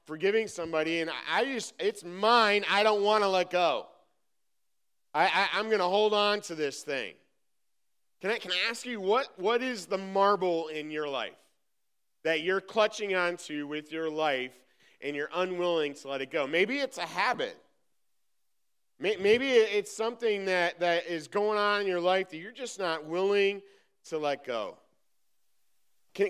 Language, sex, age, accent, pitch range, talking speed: English, male, 40-59, American, 165-215 Hz, 170 wpm